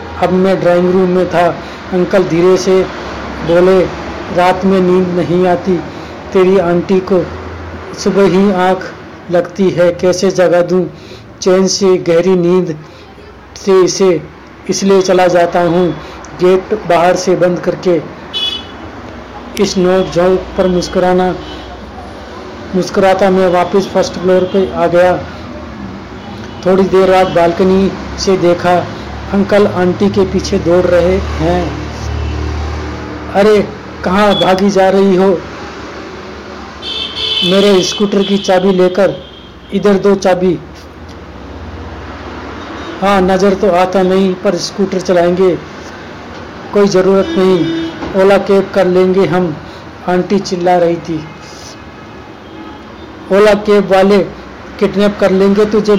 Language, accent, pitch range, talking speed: Hindi, native, 175-190 Hz, 115 wpm